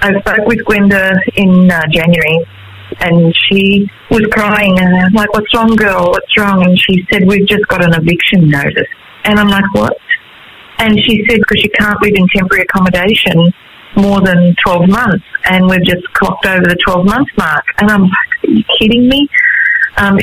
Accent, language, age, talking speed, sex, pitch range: Australian, English, 40-59, 185 wpm, female, 170-205 Hz